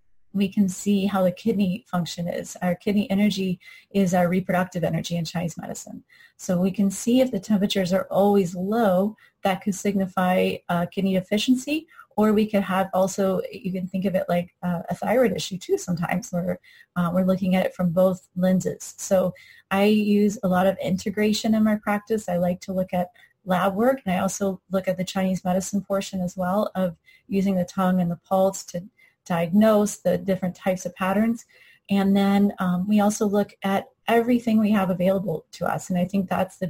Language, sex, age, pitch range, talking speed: English, female, 30-49, 180-205 Hz, 195 wpm